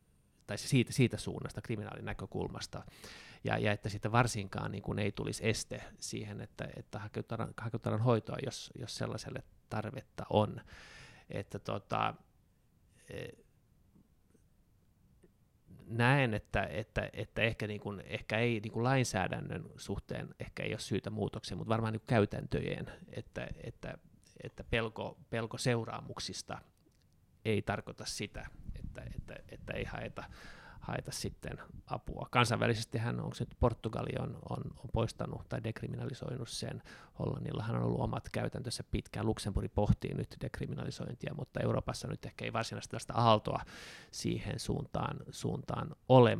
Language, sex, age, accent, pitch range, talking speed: Finnish, male, 30-49, native, 105-125 Hz, 130 wpm